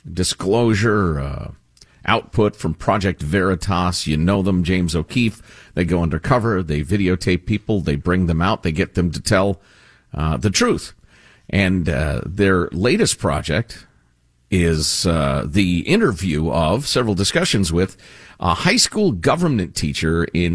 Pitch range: 85-125 Hz